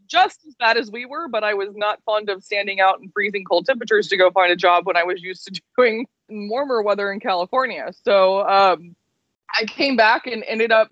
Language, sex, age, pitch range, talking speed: English, female, 20-39, 185-215 Hz, 225 wpm